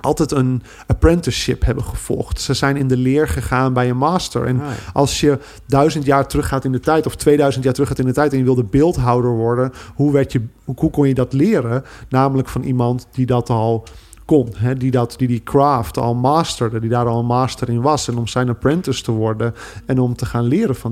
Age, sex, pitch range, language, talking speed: 40-59, male, 120-145 Hz, Dutch, 220 wpm